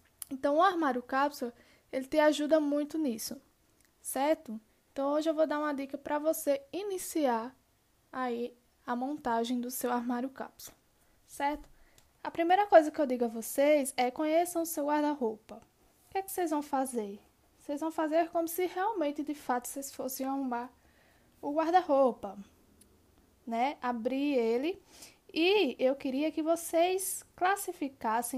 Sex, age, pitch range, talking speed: female, 10-29, 245-315 Hz, 145 wpm